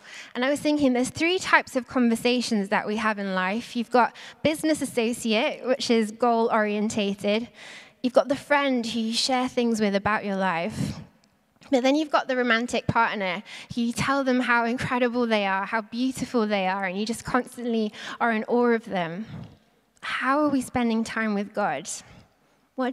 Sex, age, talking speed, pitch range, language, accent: female, 20-39, 180 wpm, 215-250 Hz, English, British